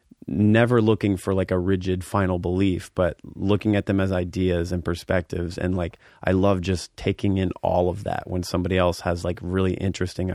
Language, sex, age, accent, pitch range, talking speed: English, male, 30-49, American, 90-100 Hz, 190 wpm